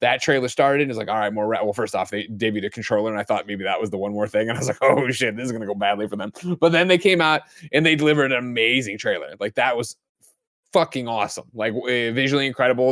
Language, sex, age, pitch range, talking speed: English, male, 20-39, 110-150 Hz, 270 wpm